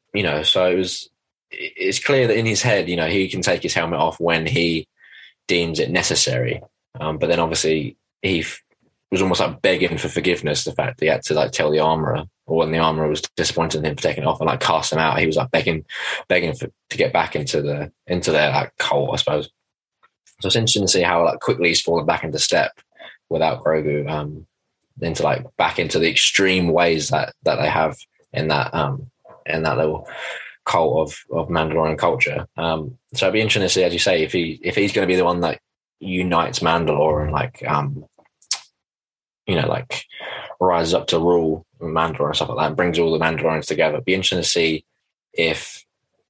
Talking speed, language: 215 wpm, English